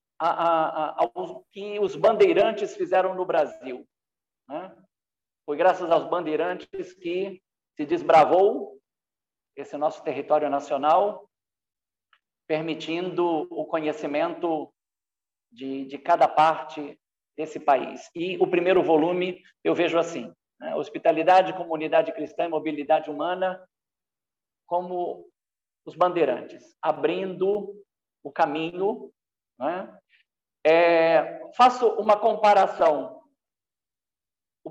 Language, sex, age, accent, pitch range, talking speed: Portuguese, male, 50-69, Brazilian, 150-195 Hz, 100 wpm